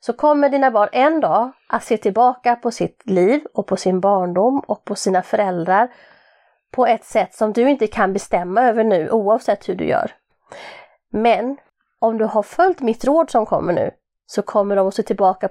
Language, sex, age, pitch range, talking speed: Swedish, female, 30-49, 200-280 Hz, 195 wpm